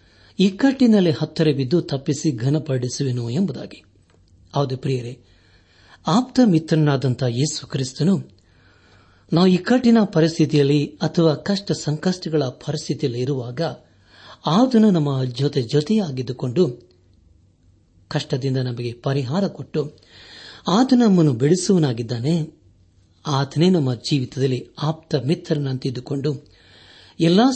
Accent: native